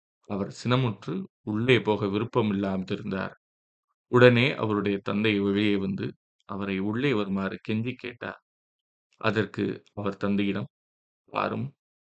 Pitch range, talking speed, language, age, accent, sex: 100-115 Hz, 100 wpm, Tamil, 20-39, native, male